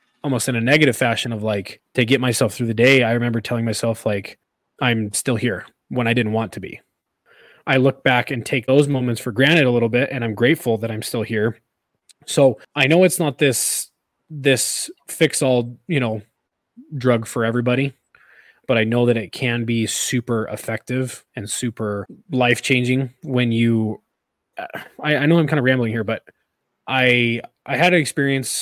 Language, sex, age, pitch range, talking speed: English, male, 20-39, 115-130 Hz, 180 wpm